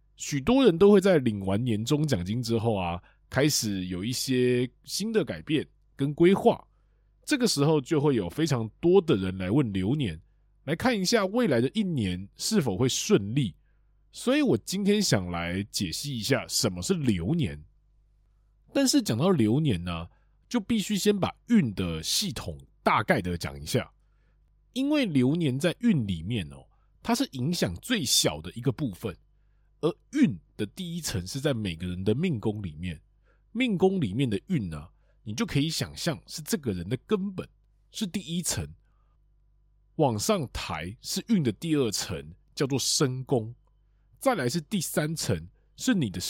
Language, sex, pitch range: Chinese, male, 110-175 Hz